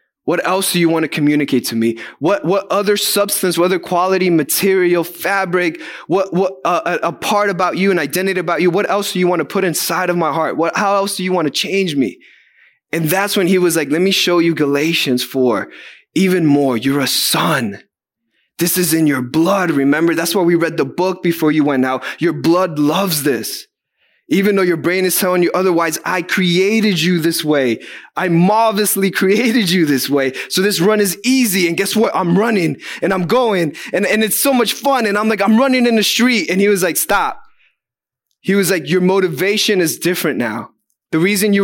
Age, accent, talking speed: 20-39, American, 215 wpm